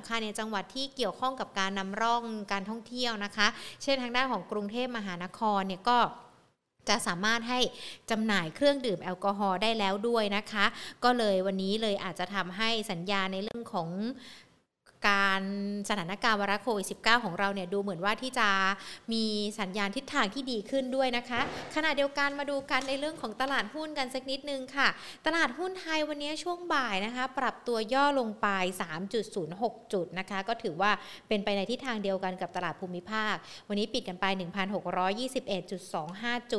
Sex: female